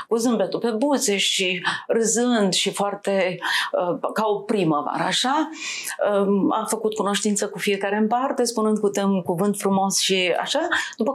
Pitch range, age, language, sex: 195-235 Hz, 40-59, Romanian, female